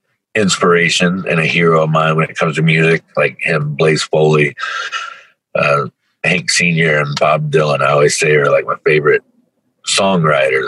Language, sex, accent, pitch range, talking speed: English, male, American, 75-110 Hz, 165 wpm